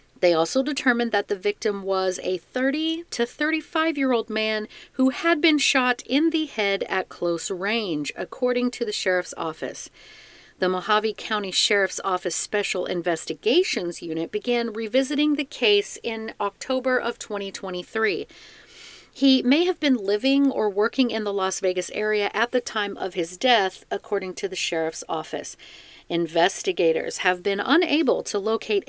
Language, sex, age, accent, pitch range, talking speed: English, female, 40-59, American, 180-250 Hz, 150 wpm